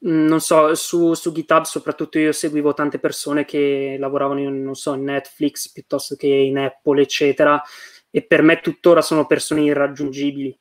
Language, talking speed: Italian, 160 wpm